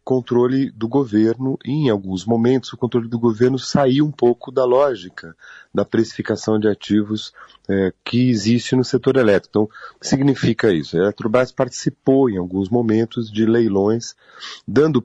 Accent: Brazilian